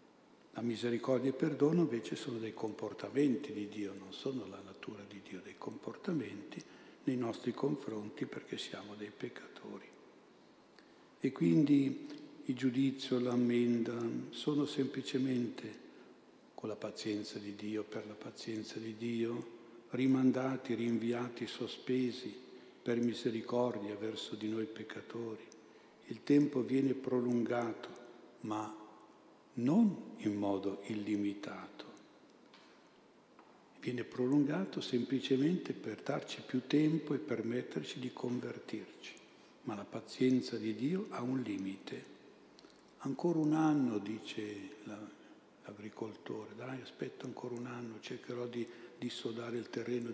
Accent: native